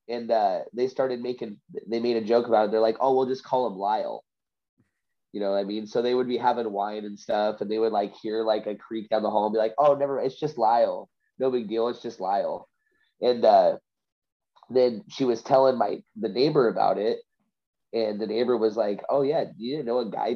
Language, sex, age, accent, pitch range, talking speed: English, male, 20-39, American, 110-130 Hz, 240 wpm